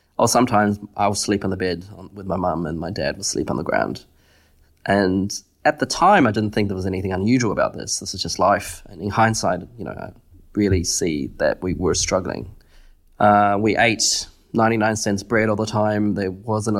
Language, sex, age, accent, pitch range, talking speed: English, male, 20-39, Australian, 90-110 Hz, 205 wpm